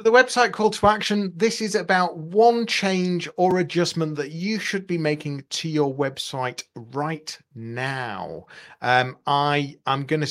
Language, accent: English, British